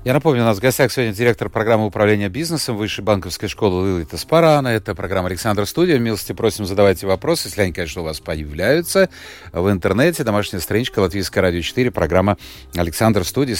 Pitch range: 95-130 Hz